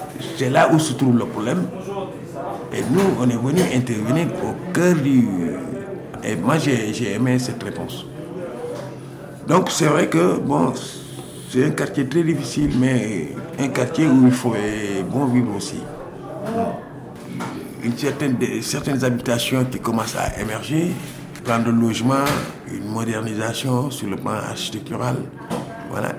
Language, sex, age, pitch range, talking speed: French, male, 60-79, 115-145 Hz, 140 wpm